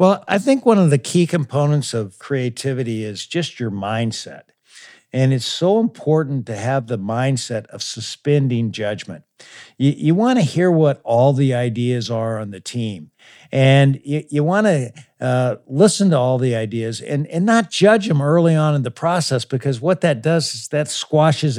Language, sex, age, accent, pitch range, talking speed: English, male, 60-79, American, 120-160 Hz, 180 wpm